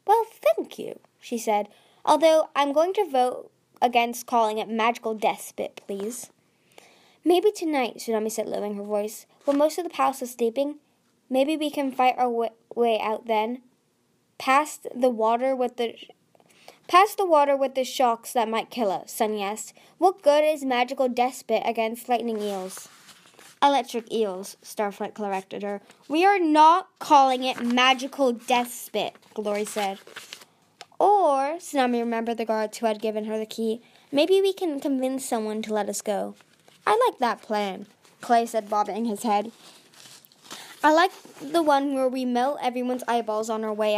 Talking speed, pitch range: 165 wpm, 215-270 Hz